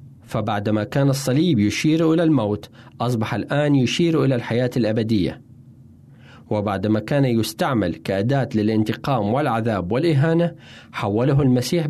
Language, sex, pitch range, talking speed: Arabic, male, 115-150 Hz, 105 wpm